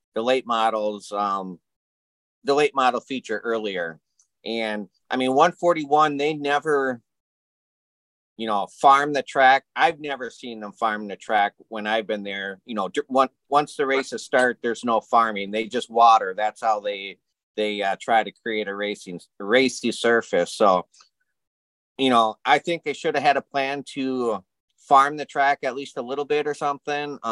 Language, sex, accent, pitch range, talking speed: English, male, American, 110-150 Hz, 175 wpm